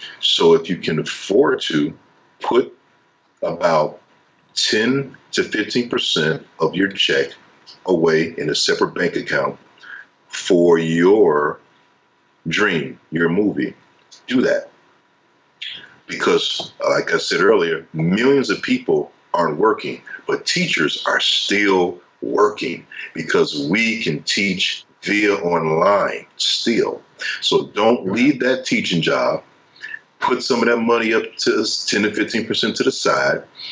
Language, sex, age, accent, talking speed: English, male, 50-69, American, 120 wpm